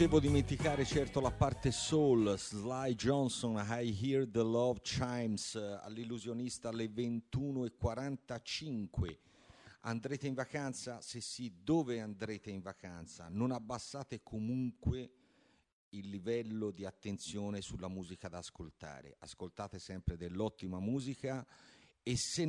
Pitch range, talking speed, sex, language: 95-125 Hz, 110 wpm, male, English